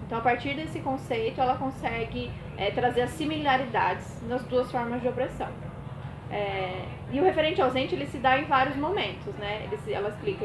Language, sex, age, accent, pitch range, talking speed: Portuguese, female, 20-39, Brazilian, 200-270 Hz, 180 wpm